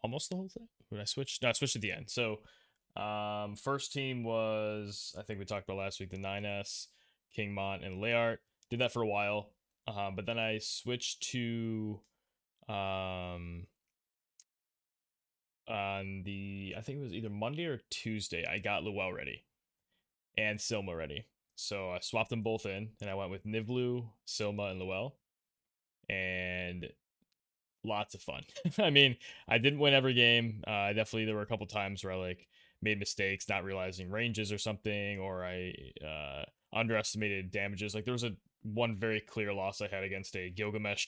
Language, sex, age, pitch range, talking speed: English, male, 10-29, 95-120 Hz, 175 wpm